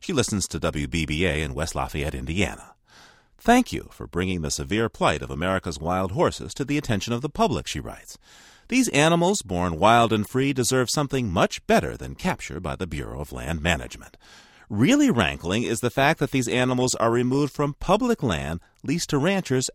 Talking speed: 185 wpm